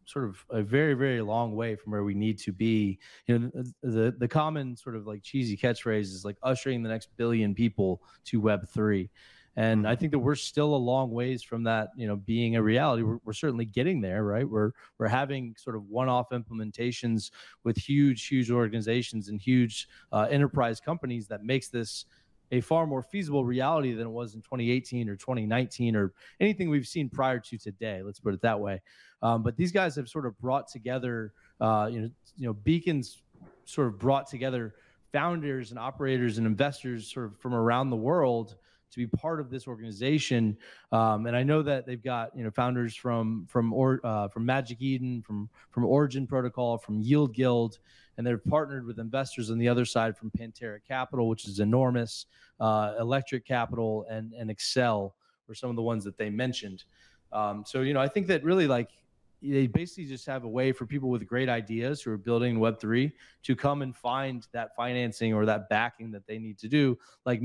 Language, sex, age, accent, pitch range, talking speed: English, male, 20-39, American, 110-130 Hz, 205 wpm